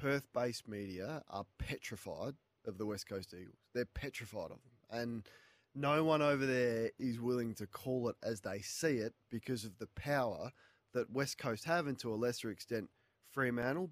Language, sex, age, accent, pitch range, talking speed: English, male, 20-39, Australian, 110-130 Hz, 175 wpm